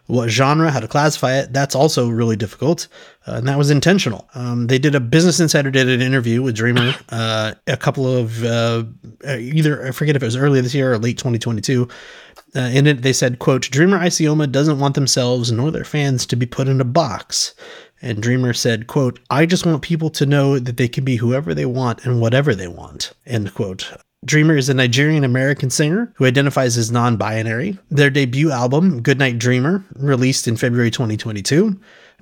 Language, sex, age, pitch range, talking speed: English, male, 30-49, 125-155 Hz, 195 wpm